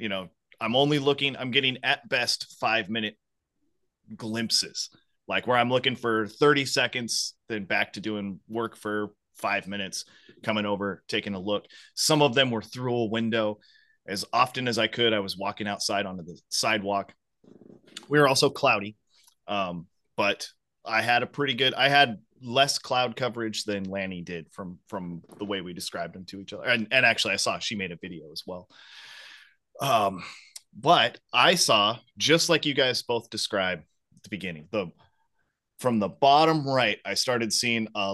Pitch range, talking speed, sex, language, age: 100-125 Hz, 180 wpm, male, English, 30-49